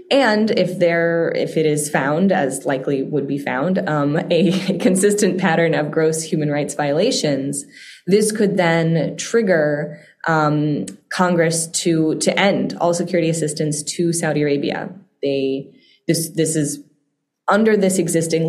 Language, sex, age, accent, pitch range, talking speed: English, female, 20-39, American, 145-180 Hz, 140 wpm